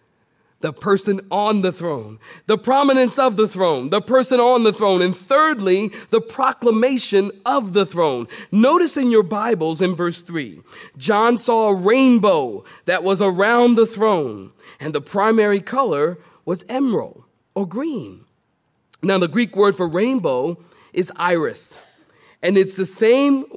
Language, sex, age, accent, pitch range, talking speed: English, male, 40-59, American, 170-225 Hz, 150 wpm